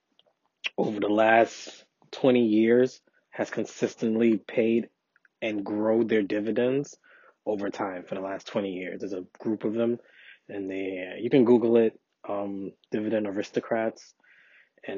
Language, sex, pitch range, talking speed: English, male, 100-115 Hz, 135 wpm